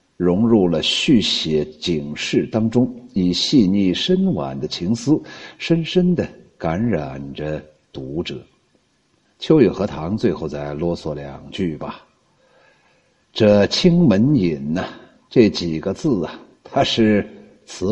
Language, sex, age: Chinese, male, 60-79